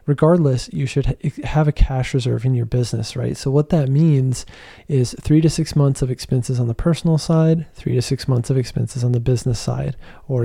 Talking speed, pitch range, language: 220 wpm, 120-140 Hz, English